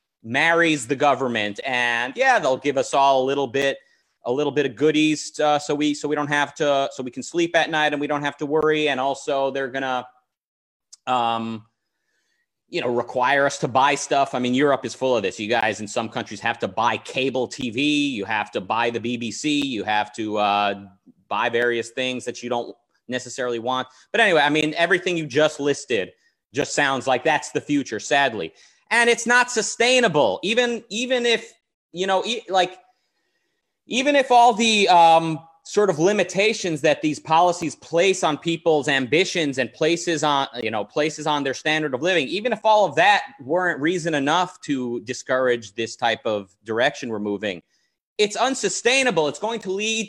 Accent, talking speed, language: American, 190 wpm, English